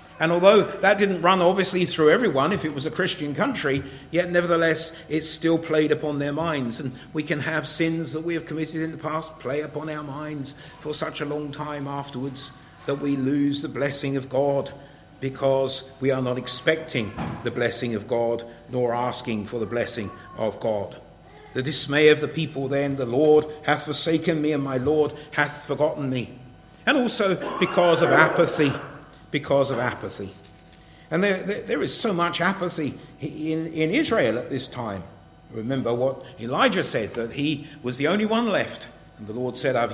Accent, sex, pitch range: British, male, 130-170 Hz